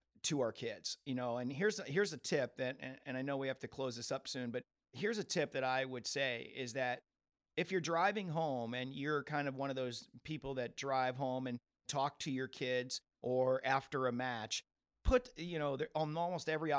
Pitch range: 125-150 Hz